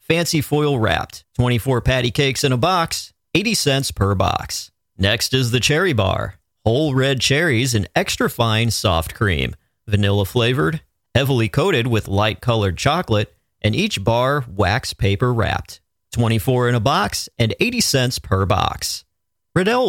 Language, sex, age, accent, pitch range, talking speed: English, male, 40-59, American, 100-130 Hz, 150 wpm